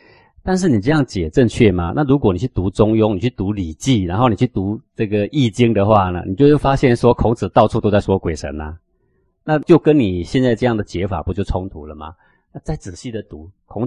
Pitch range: 90-125 Hz